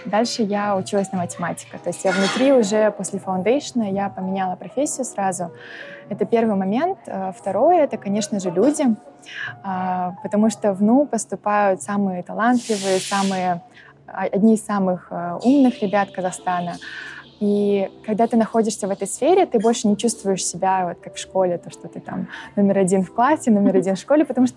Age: 20-39